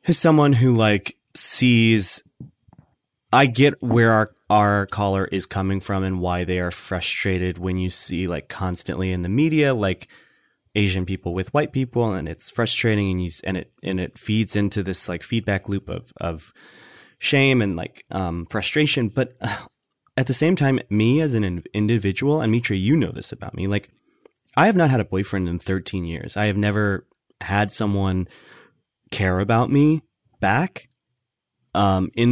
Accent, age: American, 20-39